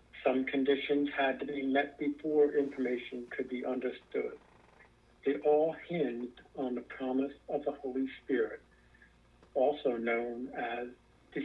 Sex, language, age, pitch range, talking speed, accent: male, English, 60-79, 125-145 Hz, 130 wpm, American